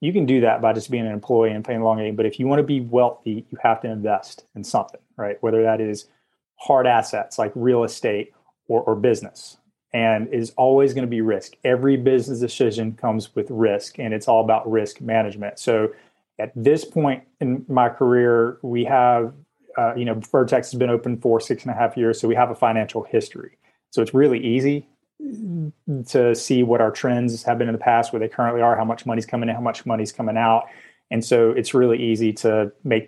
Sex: male